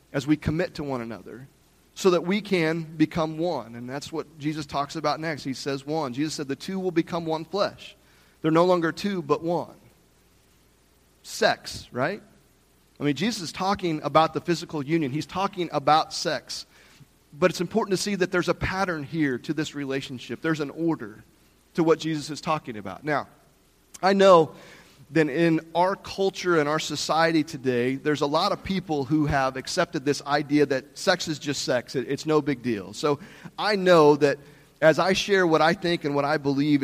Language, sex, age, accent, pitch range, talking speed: English, male, 40-59, American, 140-170 Hz, 190 wpm